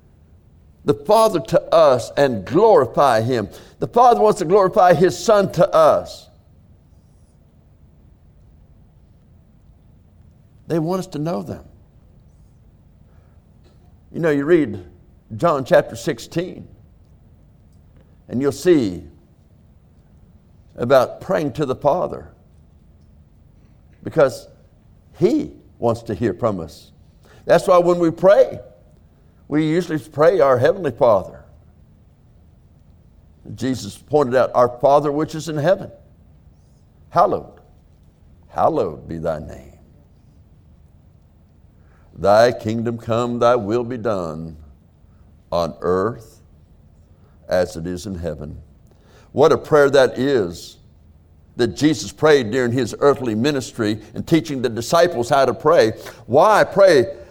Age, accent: 60-79, American